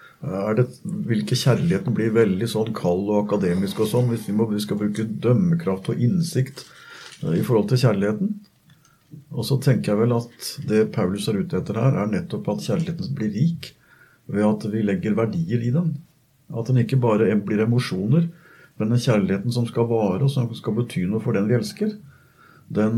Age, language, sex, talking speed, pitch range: 60-79, English, male, 190 wpm, 110-150 Hz